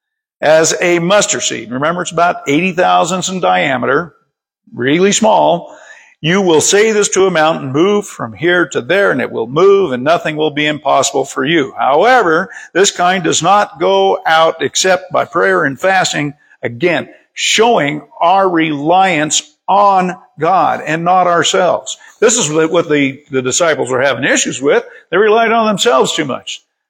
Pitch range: 145-195 Hz